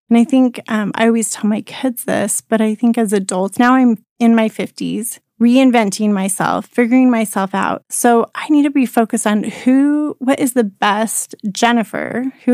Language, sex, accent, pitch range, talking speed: English, female, American, 210-245 Hz, 185 wpm